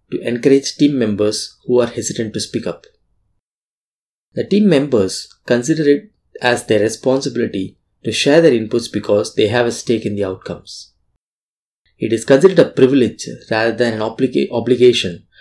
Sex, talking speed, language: male, 155 wpm, English